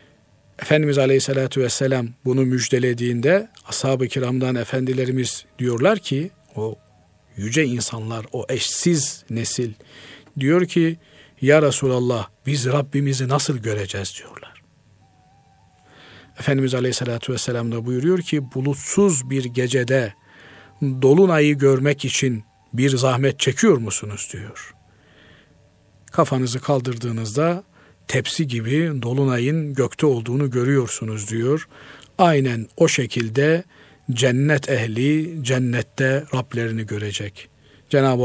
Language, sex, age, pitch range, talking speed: Turkish, male, 50-69, 120-150 Hz, 95 wpm